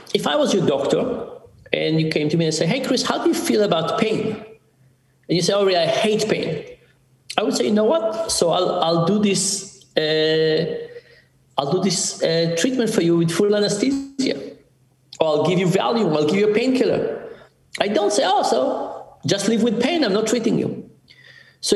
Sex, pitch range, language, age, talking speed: male, 165-245 Hz, English, 50-69, 195 wpm